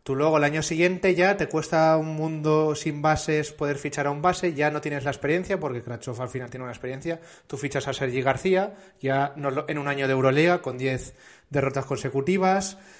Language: Spanish